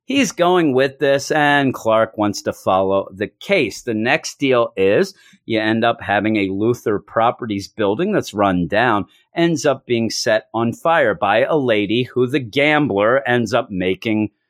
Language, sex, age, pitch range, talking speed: English, male, 40-59, 120-180 Hz, 170 wpm